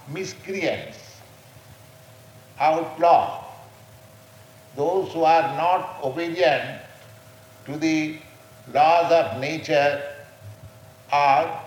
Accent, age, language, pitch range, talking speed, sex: Indian, 60-79, English, 125-150 Hz, 65 wpm, male